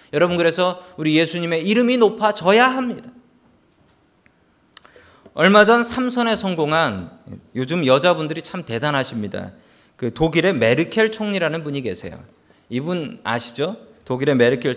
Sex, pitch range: male, 145-220 Hz